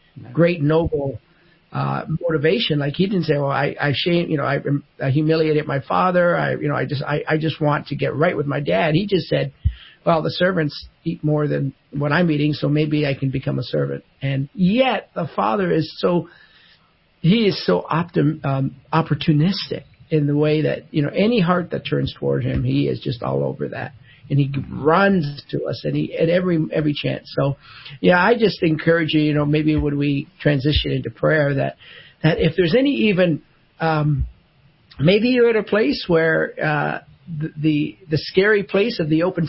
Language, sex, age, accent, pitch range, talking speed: English, male, 50-69, American, 145-175 Hz, 195 wpm